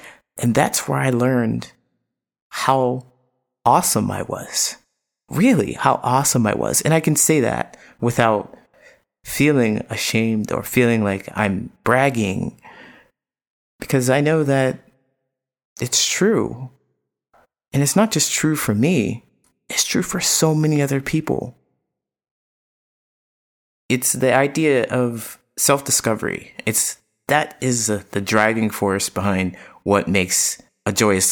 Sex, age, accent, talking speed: male, 30-49, American, 125 wpm